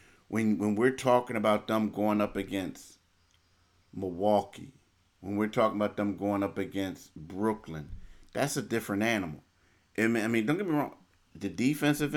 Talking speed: 165 wpm